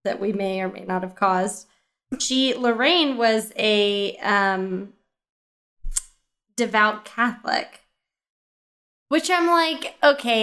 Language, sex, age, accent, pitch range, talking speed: English, female, 20-39, American, 190-235 Hz, 110 wpm